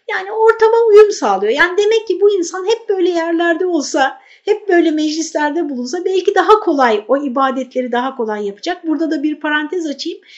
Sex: female